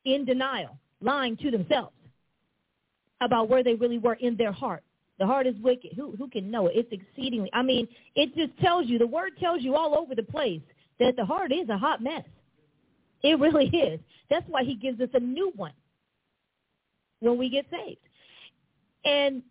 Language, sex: English, female